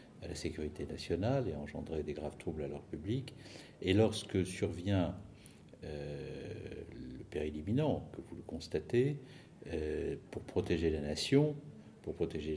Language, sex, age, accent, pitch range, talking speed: French, male, 50-69, French, 80-100 Hz, 145 wpm